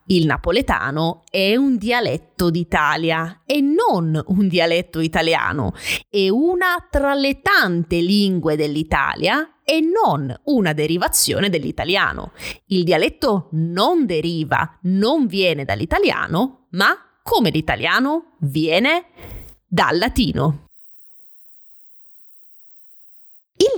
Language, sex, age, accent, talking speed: Italian, female, 20-39, native, 95 wpm